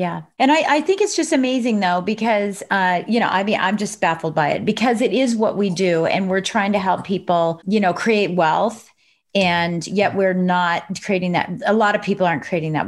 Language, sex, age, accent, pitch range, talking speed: English, female, 30-49, American, 185-235 Hz, 230 wpm